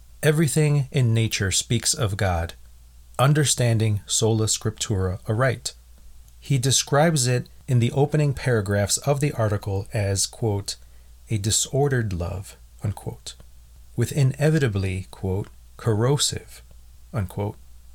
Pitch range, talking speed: 85-130 Hz, 105 wpm